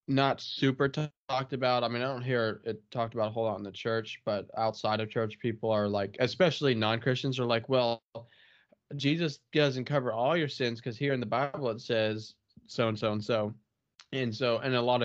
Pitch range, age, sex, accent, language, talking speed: 110-125 Hz, 20-39, male, American, English, 210 wpm